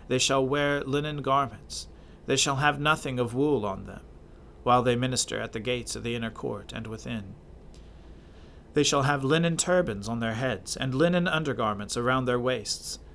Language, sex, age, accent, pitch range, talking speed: English, male, 40-59, American, 105-140 Hz, 180 wpm